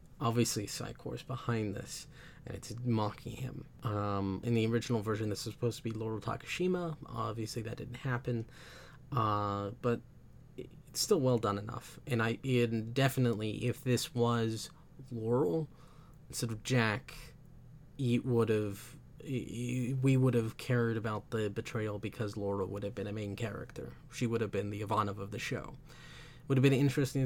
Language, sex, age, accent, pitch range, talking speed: English, male, 20-39, American, 115-140 Hz, 160 wpm